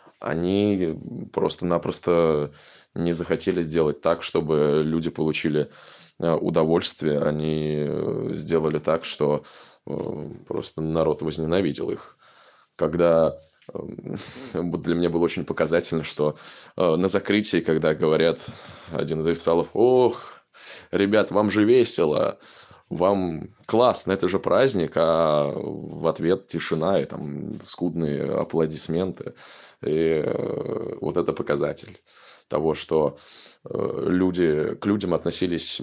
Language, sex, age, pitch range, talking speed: Russian, male, 20-39, 80-95 Hz, 100 wpm